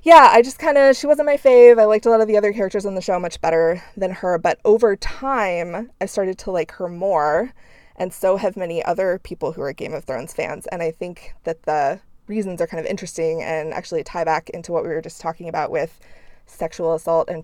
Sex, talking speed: female, 240 wpm